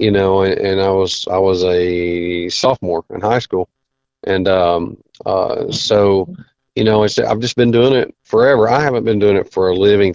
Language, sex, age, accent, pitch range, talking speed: English, male, 40-59, American, 95-115 Hz, 200 wpm